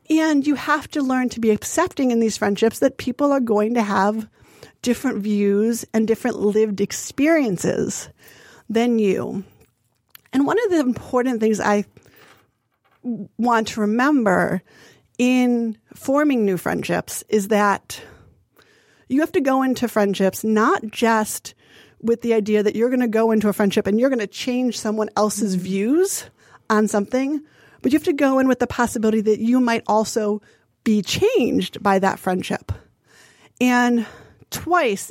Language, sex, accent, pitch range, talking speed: English, female, American, 205-255 Hz, 155 wpm